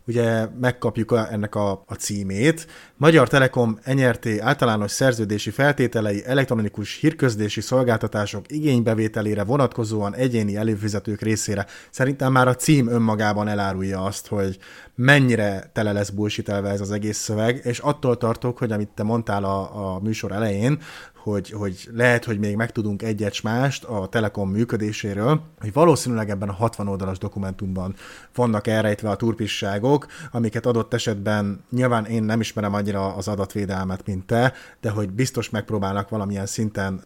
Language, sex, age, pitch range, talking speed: Hungarian, male, 30-49, 105-120 Hz, 140 wpm